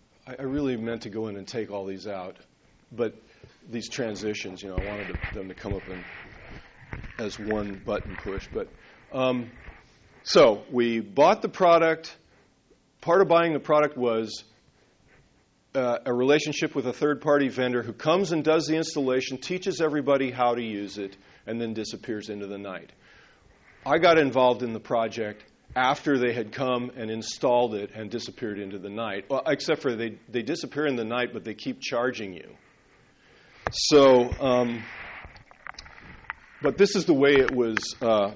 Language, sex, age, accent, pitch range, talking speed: English, male, 40-59, American, 105-130 Hz, 165 wpm